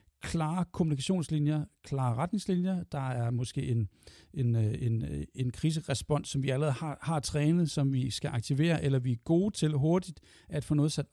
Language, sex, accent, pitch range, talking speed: Danish, male, native, 125-155 Hz, 175 wpm